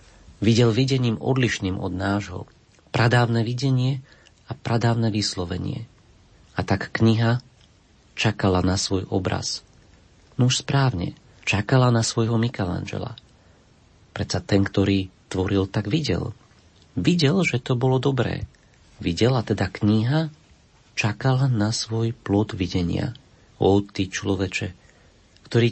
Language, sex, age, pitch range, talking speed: Slovak, male, 40-59, 95-120 Hz, 105 wpm